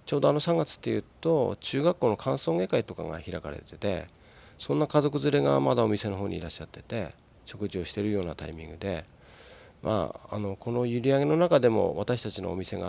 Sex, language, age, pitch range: male, Japanese, 40-59, 90-115 Hz